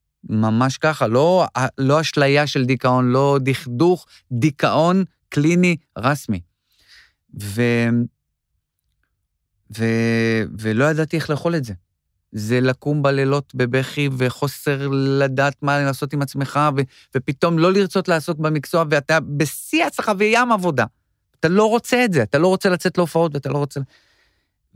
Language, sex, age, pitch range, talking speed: Hebrew, male, 30-49, 115-160 Hz, 130 wpm